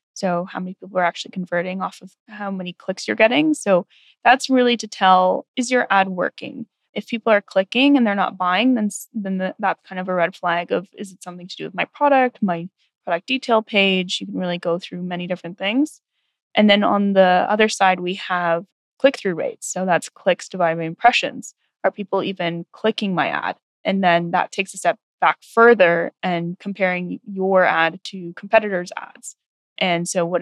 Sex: female